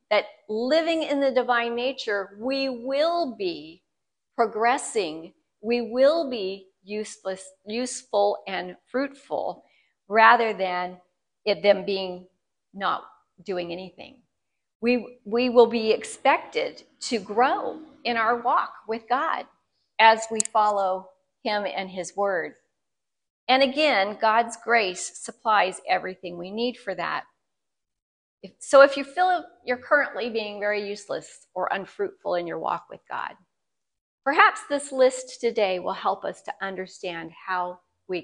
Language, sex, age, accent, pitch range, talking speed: English, female, 40-59, American, 200-260 Hz, 125 wpm